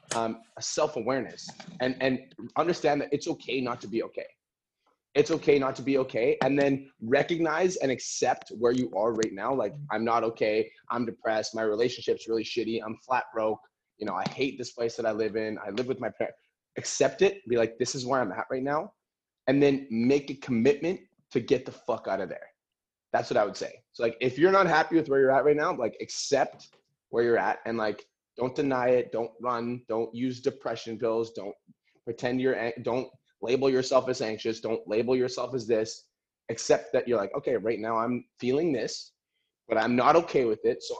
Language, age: English, 20-39